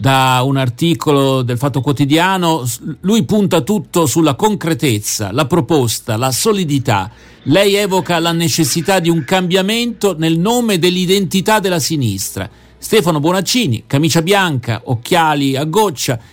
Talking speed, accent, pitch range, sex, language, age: 125 wpm, native, 135-175 Hz, male, Italian, 50-69